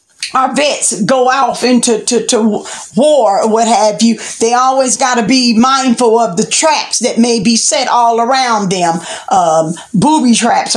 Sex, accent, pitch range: female, American, 220-275 Hz